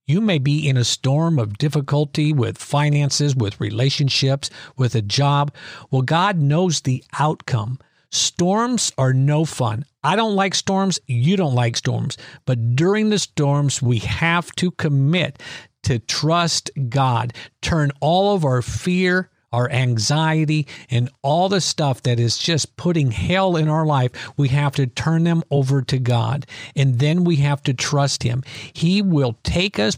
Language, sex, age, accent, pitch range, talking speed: English, male, 50-69, American, 125-155 Hz, 160 wpm